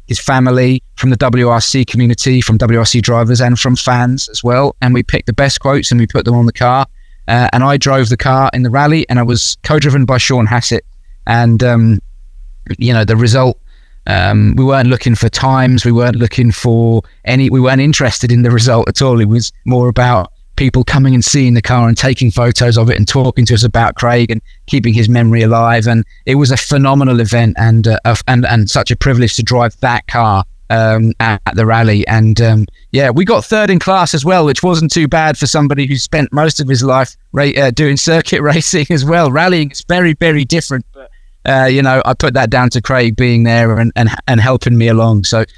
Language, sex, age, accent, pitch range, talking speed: English, male, 20-39, British, 115-135 Hz, 225 wpm